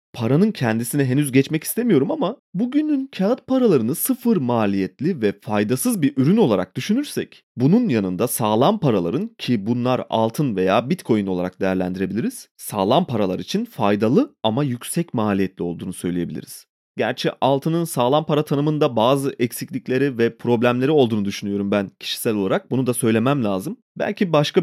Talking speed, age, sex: 140 wpm, 30-49, male